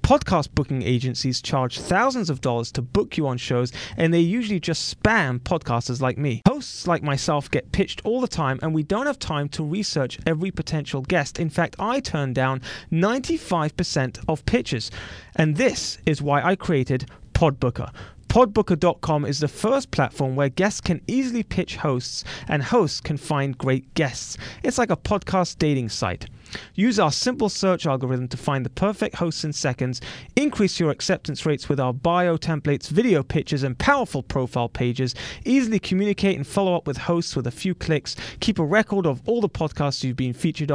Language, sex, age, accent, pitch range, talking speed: English, male, 30-49, British, 130-185 Hz, 185 wpm